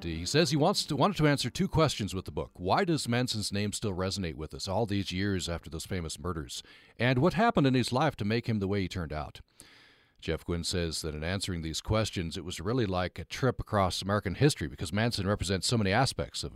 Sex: male